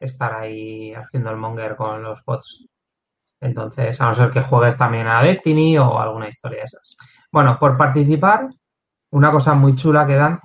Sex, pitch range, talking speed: male, 120-145 Hz, 180 wpm